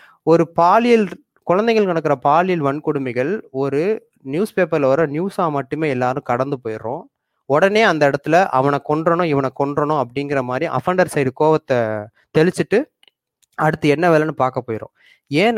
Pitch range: 130-175 Hz